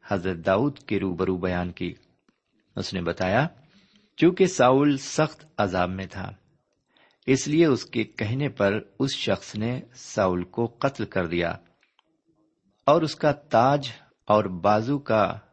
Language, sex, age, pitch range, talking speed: Urdu, male, 50-69, 95-135 Hz, 140 wpm